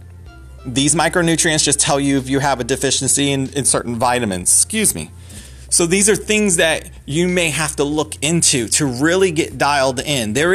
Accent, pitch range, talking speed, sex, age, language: American, 110-175 Hz, 190 wpm, male, 30-49, English